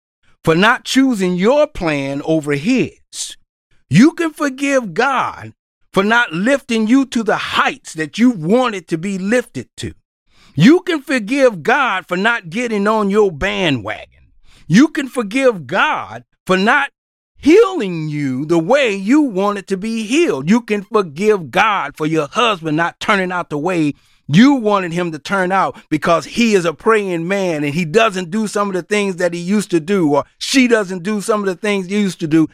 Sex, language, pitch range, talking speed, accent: male, English, 165-235 Hz, 185 wpm, American